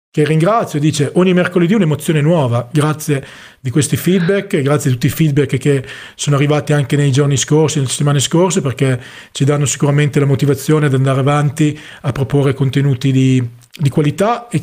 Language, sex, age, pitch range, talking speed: Italian, male, 40-59, 140-175 Hz, 170 wpm